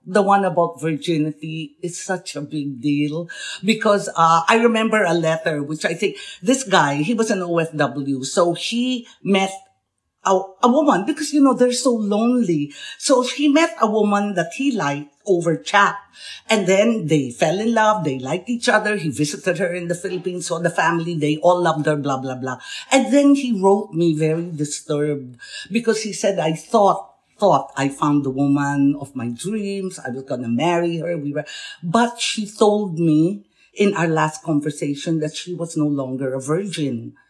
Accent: Filipino